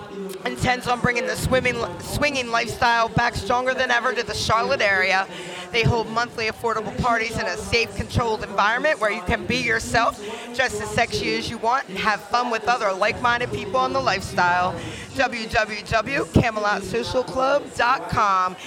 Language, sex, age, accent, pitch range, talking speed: English, female, 40-59, American, 200-240 Hz, 150 wpm